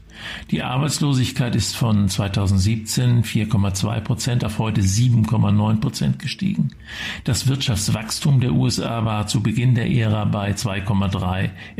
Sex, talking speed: male, 115 wpm